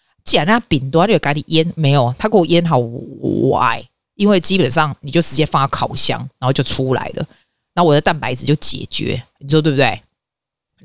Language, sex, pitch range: Chinese, female, 145-185 Hz